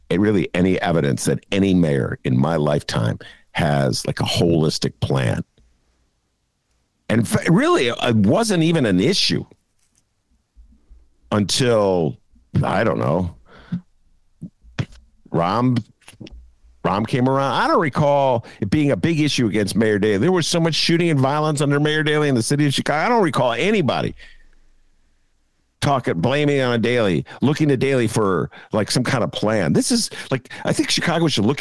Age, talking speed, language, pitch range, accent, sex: 50-69, 155 wpm, English, 90-145 Hz, American, male